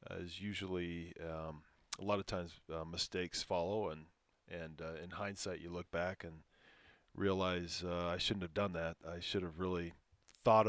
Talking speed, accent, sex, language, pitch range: 175 wpm, American, male, English, 90-110 Hz